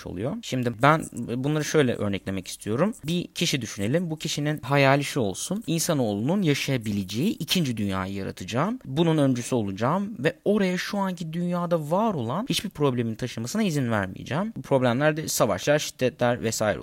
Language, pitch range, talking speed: Turkish, 110-170 Hz, 145 wpm